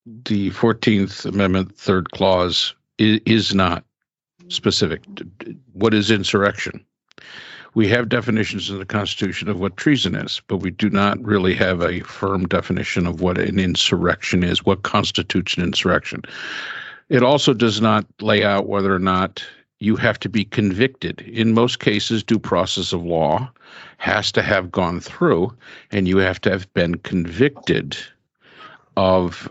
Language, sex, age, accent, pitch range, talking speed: English, male, 50-69, American, 95-110 Hz, 150 wpm